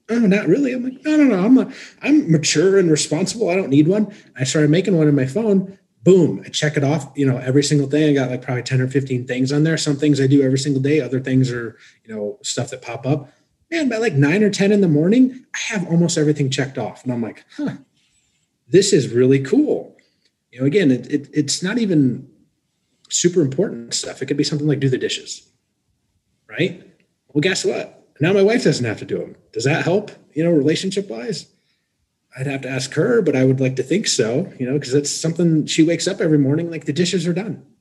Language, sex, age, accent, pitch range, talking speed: English, male, 30-49, American, 135-180 Hz, 235 wpm